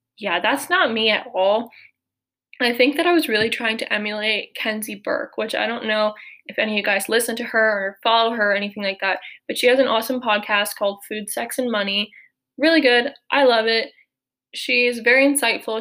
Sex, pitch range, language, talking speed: female, 215-270 Hz, English, 210 wpm